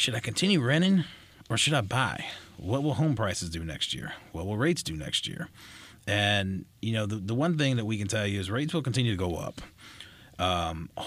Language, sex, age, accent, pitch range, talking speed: English, male, 30-49, American, 95-120 Hz, 220 wpm